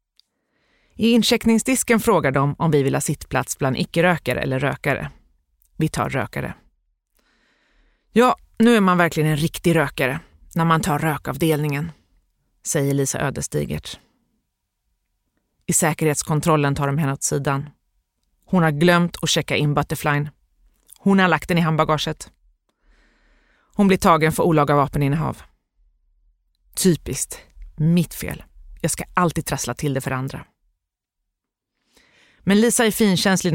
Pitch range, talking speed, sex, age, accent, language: 140-195 Hz, 130 wpm, female, 30-49, native, Swedish